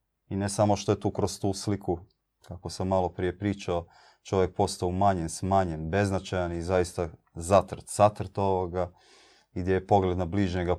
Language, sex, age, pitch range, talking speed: Croatian, male, 30-49, 90-100 Hz, 160 wpm